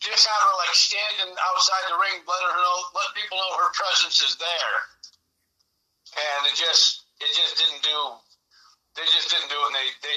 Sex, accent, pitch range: male, American, 135-180 Hz